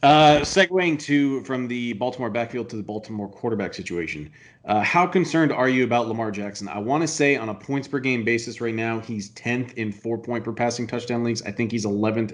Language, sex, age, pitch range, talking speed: English, male, 30-49, 110-135 Hz, 220 wpm